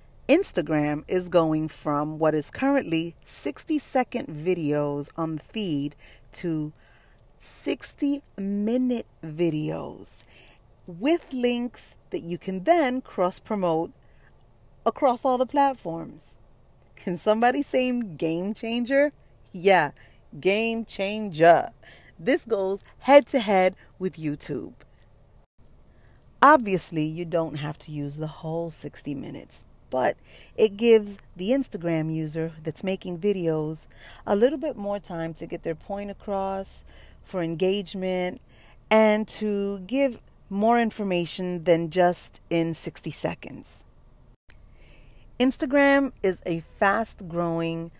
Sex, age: female, 30-49